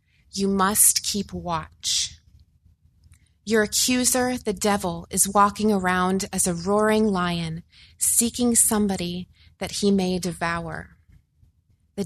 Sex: female